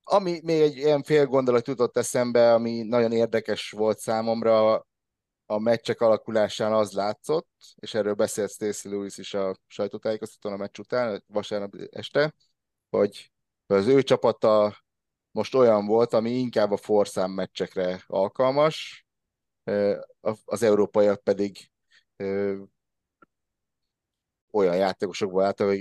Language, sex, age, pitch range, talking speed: Hungarian, male, 30-49, 95-115 Hz, 115 wpm